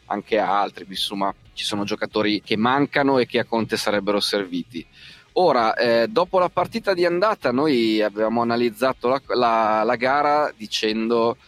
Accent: native